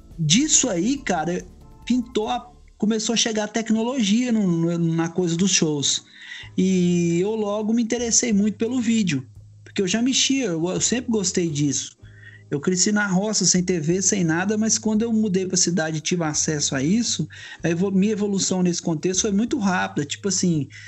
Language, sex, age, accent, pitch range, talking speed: Portuguese, male, 20-39, Brazilian, 155-210 Hz, 165 wpm